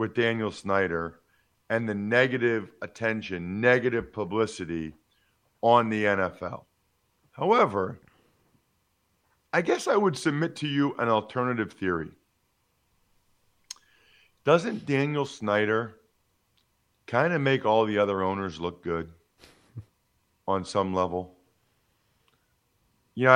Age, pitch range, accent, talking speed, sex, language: 50-69, 100-145 Hz, American, 100 wpm, male, English